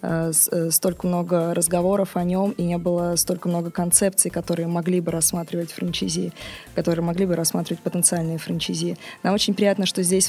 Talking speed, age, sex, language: 155 wpm, 20-39, female, Russian